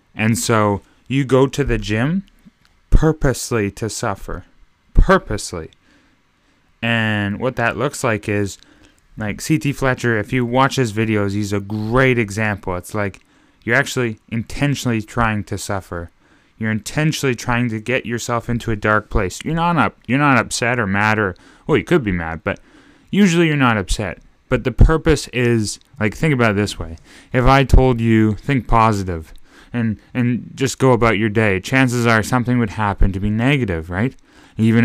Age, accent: 20-39, American